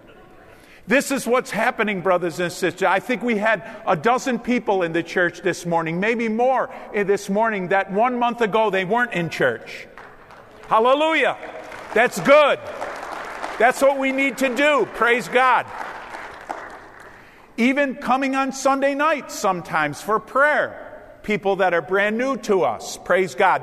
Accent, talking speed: American, 150 wpm